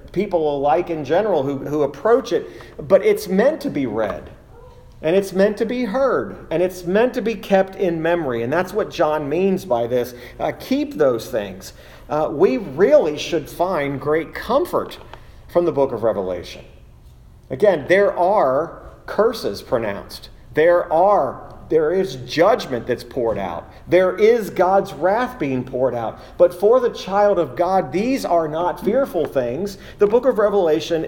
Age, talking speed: 40-59, 165 wpm